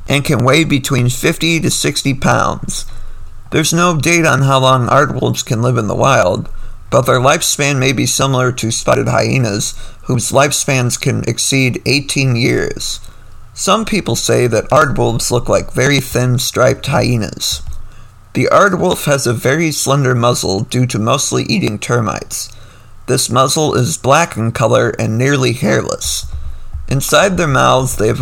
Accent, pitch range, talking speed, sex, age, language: American, 115-140 Hz, 155 wpm, male, 50-69, English